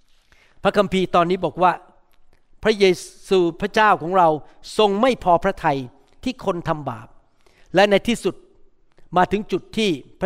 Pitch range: 170-230 Hz